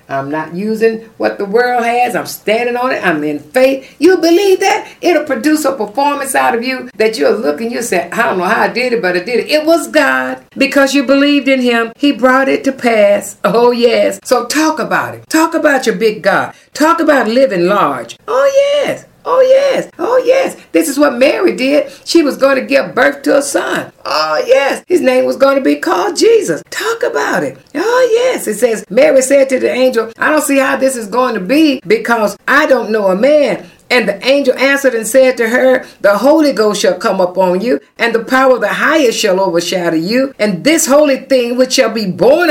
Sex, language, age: female, English, 50-69